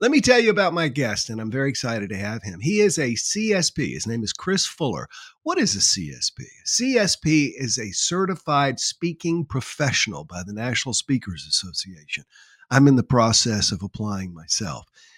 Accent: American